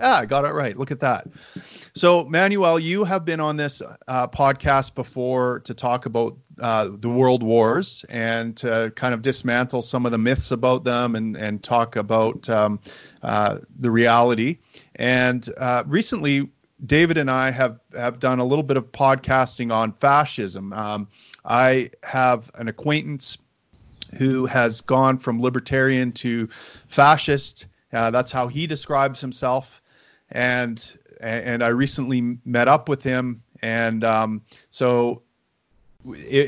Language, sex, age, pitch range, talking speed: English, male, 40-59, 115-135 Hz, 150 wpm